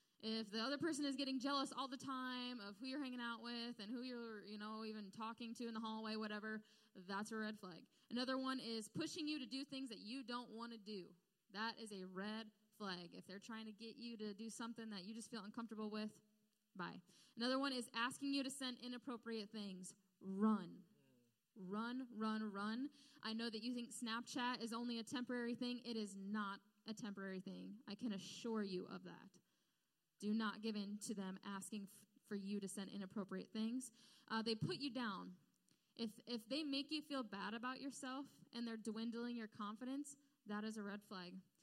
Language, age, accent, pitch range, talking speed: English, 10-29, American, 205-250 Hz, 205 wpm